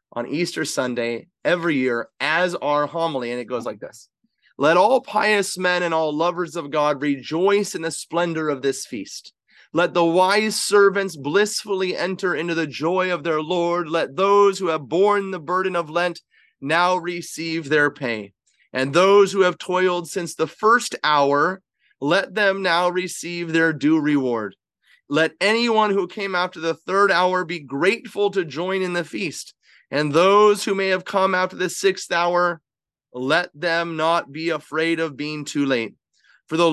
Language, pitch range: English, 155-185 Hz